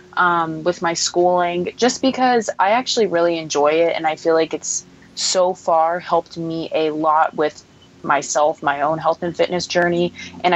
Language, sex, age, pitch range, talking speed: English, female, 20-39, 165-185 Hz, 175 wpm